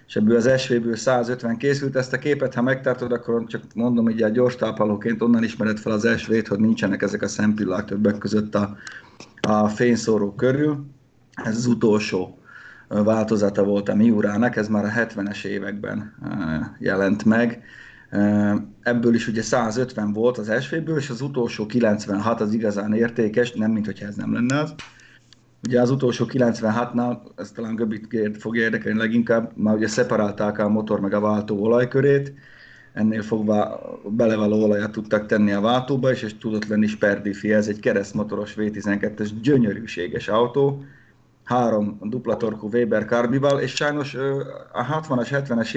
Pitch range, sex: 105-120 Hz, male